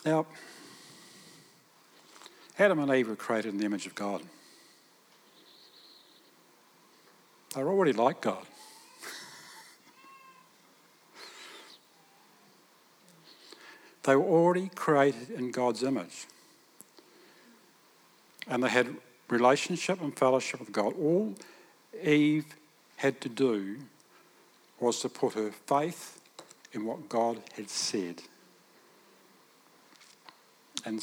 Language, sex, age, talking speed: English, male, 60-79, 90 wpm